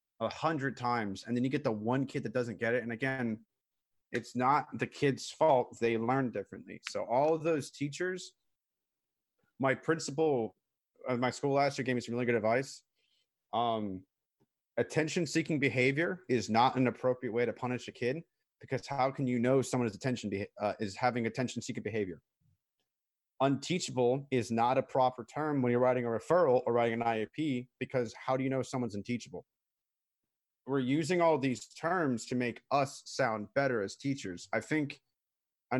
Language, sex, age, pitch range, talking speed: English, male, 30-49, 115-135 Hz, 175 wpm